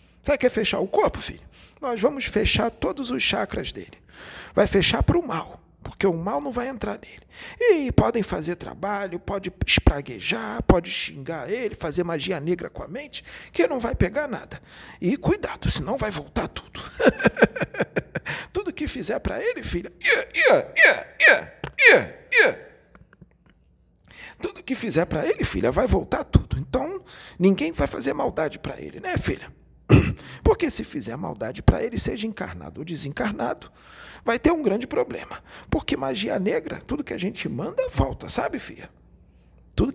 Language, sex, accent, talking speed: Portuguese, male, Brazilian, 155 wpm